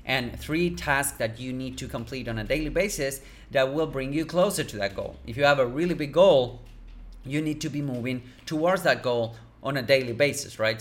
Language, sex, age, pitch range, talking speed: English, male, 30-49, 115-140 Hz, 220 wpm